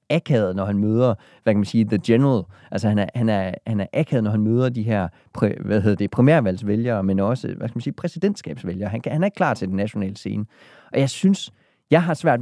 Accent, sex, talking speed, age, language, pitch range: native, male, 235 wpm, 30-49, Danish, 95-125 Hz